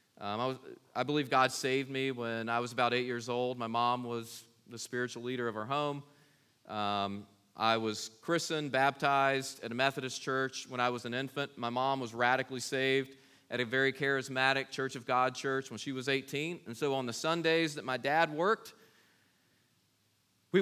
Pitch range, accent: 120-150 Hz, American